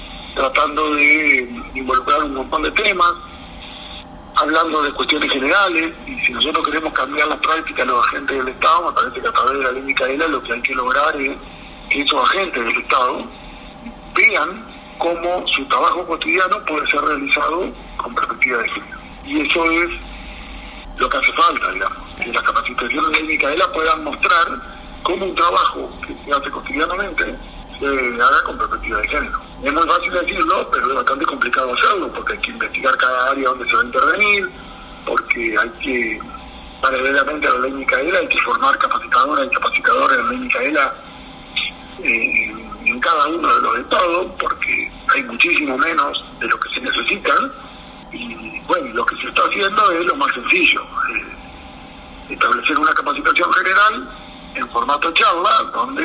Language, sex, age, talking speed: Spanish, male, 50-69, 170 wpm